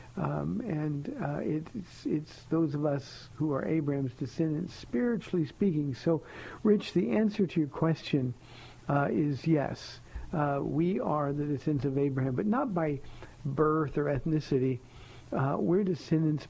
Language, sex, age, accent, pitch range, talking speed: English, male, 60-79, American, 130-165 Hz, 145 wpm